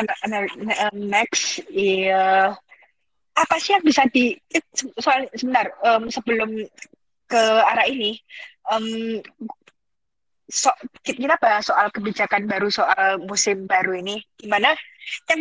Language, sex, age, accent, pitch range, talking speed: Indonesian, female, 20-39, native, 225-285 Hz, 105 wpm